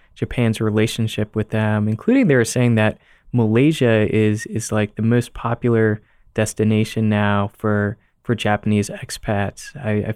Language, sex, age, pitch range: Japanese, male, 20-39, 105-120 Hz